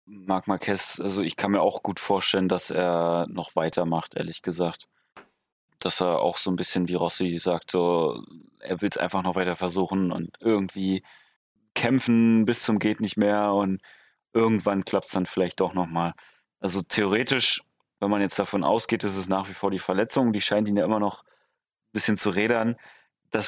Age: 30-49